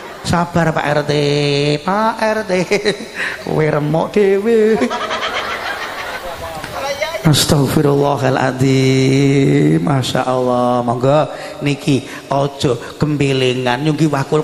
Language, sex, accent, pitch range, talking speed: Indonesian, male, native, 135-185 Hz, 65 wpm